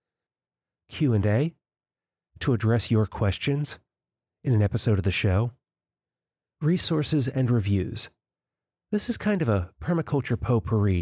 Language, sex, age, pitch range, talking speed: English, male, 40-59, 110-145 Hz, 115 wpm